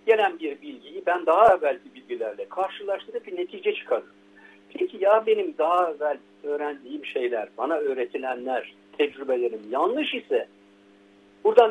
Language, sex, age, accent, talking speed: Turkish, male, 60-79, native, 125 wpm